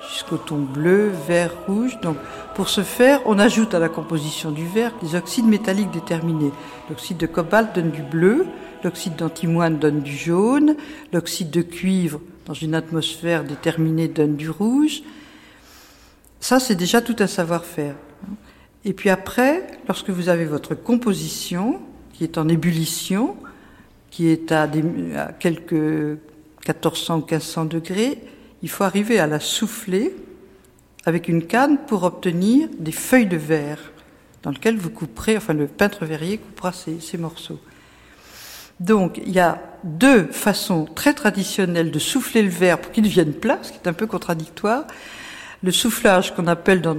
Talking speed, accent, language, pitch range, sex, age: 155 wpm, French, French, 160-220 Hz, female, 50-69